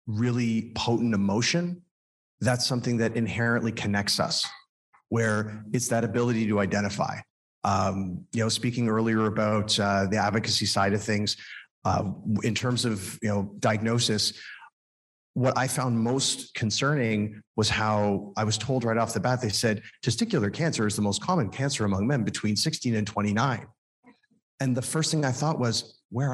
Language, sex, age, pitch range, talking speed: English, male, 30-49, 110-135 Hz, 160 wpm